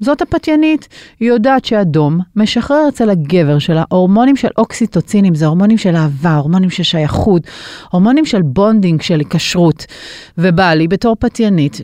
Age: 40-59